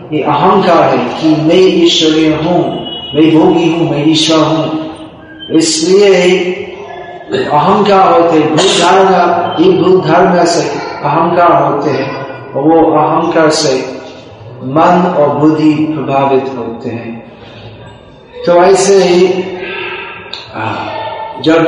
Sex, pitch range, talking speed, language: male, 155-190 Hz, 95 wpm, Hindi